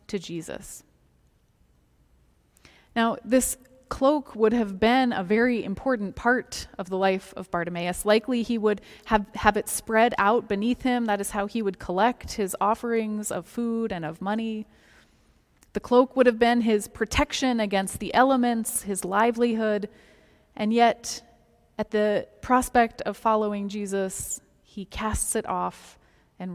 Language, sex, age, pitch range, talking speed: English, female, 20-39, 200-245 Hz, 145 wpm